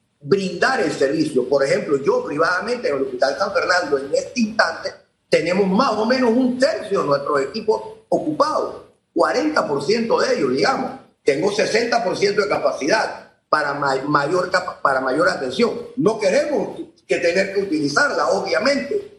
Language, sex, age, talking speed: Spanish, male, 40-59, 140 wpm